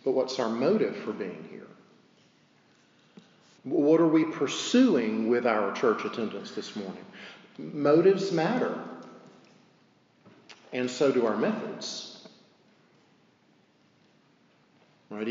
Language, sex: English, male